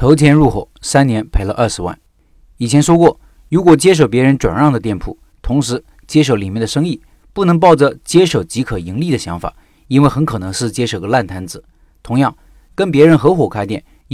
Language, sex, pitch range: Chinese, male, 110-150 Hz